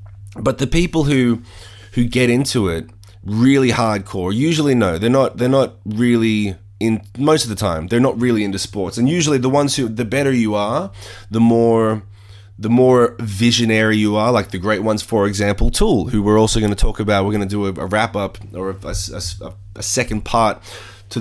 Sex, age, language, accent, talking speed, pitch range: male, 20-39, English, Australian, 205 wpm, 100-120 Hz